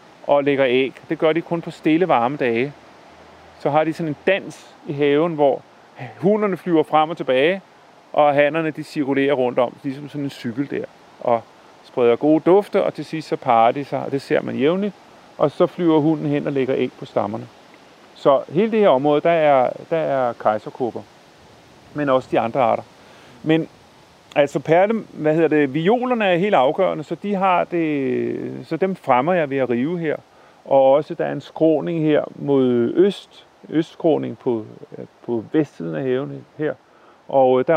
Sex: male